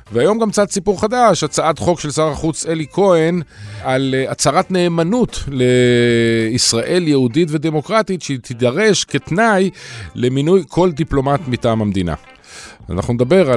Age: 50-69